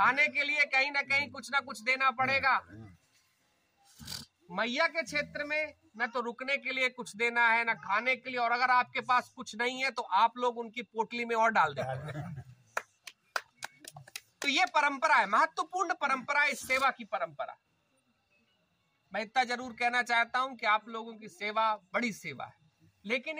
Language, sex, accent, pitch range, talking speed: Hindi, male, native, 225-275 Hz, 175 wpm